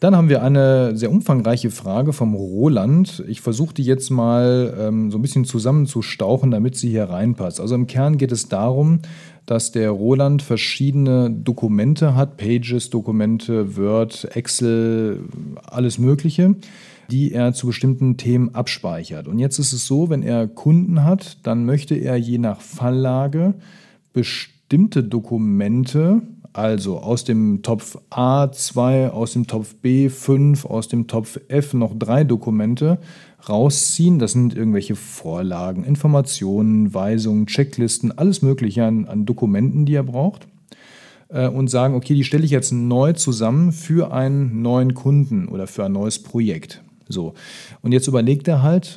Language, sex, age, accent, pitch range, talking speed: German, male, 40-59, German, 115-150 Hz, 150 wpm